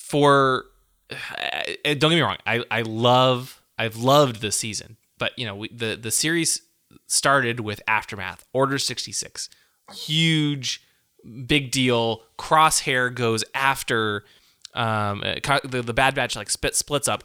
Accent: American